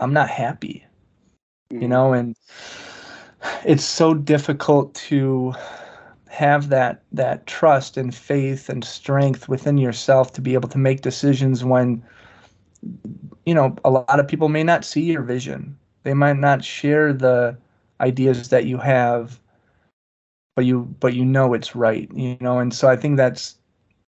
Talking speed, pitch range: 150 wpm, 125-140 Hz